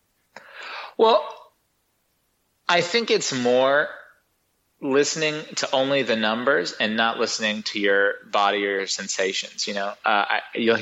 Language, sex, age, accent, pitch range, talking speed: English, male, 30-49, American, 100-120 Hz, 135 wpm